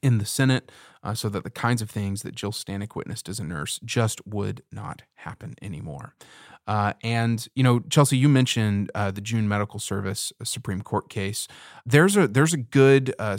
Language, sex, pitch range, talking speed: English, male, 105-130 Hz, 195 wpm